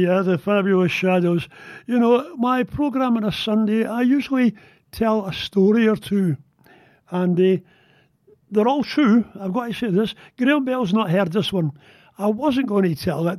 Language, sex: English, male